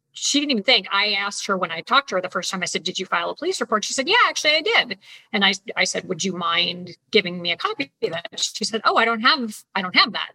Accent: American